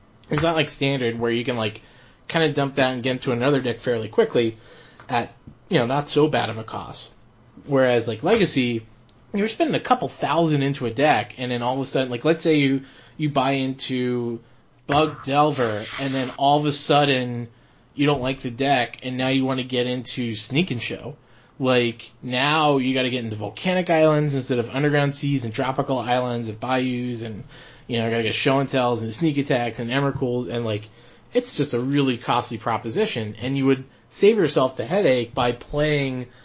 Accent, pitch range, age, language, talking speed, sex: American, 115-140 Hz, 20-39, English, 200 wpm, male